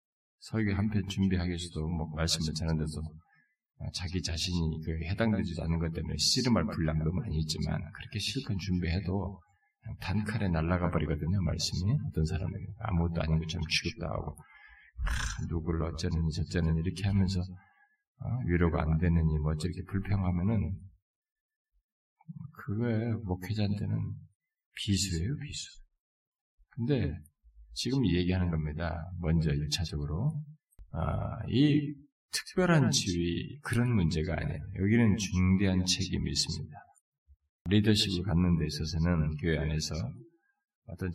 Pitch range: 80-105 Hz